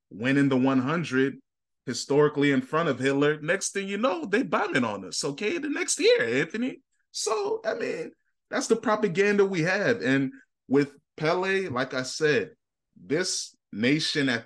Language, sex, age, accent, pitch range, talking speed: English, male, 20-39, American, 120-145 Hz, 160 wpm